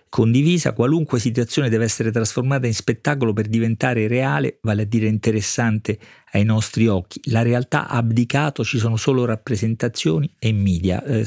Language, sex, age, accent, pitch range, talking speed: Italian, male, 40-59, native, 110-135 Hz, 150 wpm